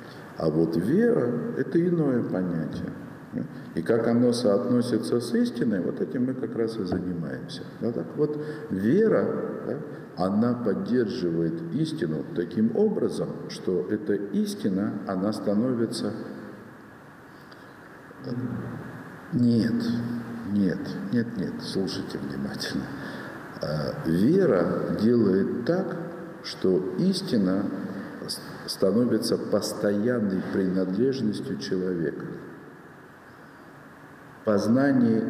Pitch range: 95-155 Hz